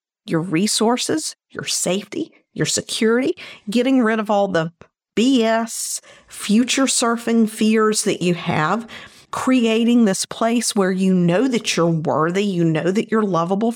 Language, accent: English, American